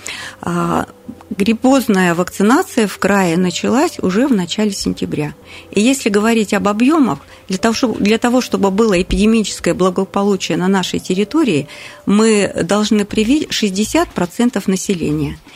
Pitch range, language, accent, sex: 185-235 Hz, Russian, native, female